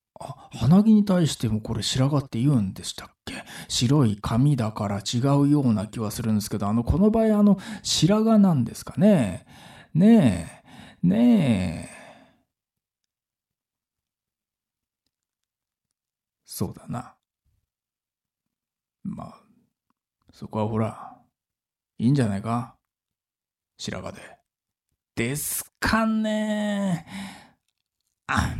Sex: male